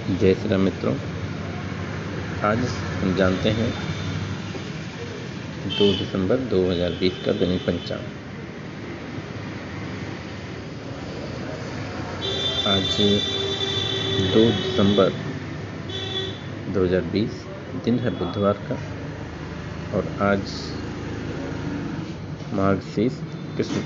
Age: 50-69